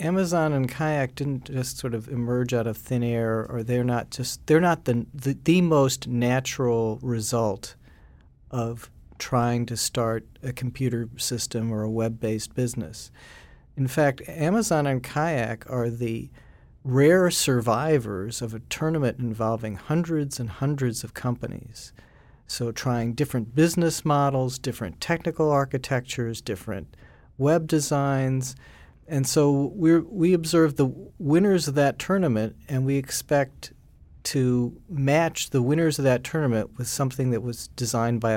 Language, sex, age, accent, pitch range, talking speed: English, male, 40-59, American, 115-140 Hz, 140 wpm